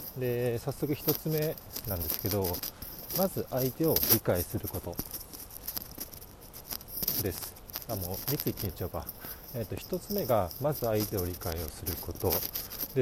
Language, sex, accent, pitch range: Japanese, male, native, 95-135 Hz